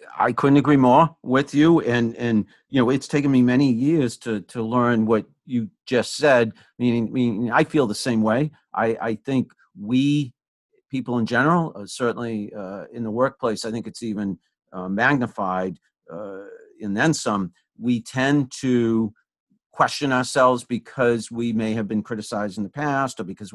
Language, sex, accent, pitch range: English, male, American, 105-125 Hz